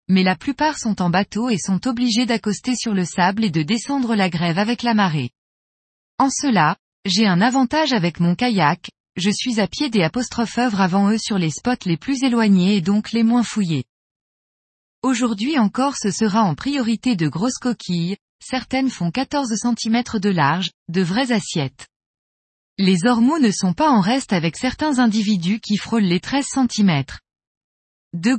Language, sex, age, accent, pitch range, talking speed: French, female, 20-39, French, 185-250 Hz, 175 wpm